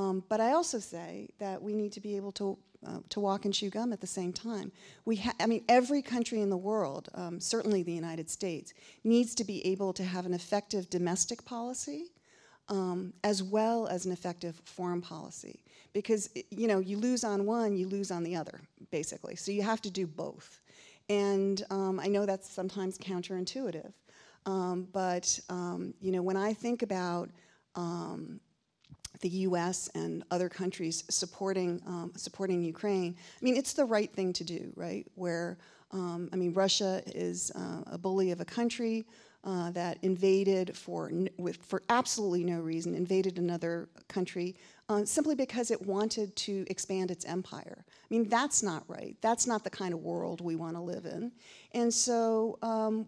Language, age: English, 40-59